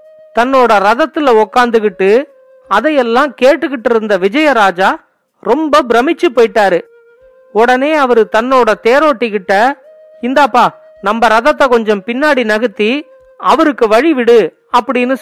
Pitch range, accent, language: 225-310 Hz, native, Tamil